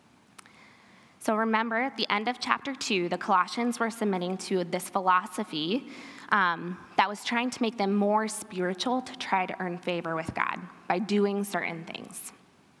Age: 20-39